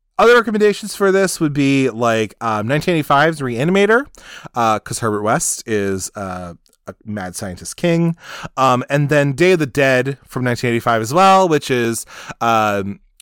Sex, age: male, 20-39